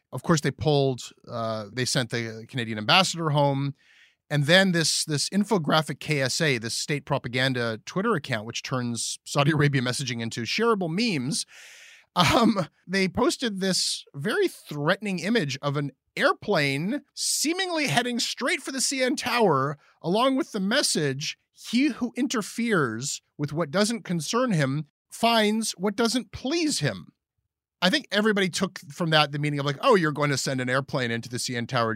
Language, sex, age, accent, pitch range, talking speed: English, male, 30-49, American, 135-225 Hz, 160 wpm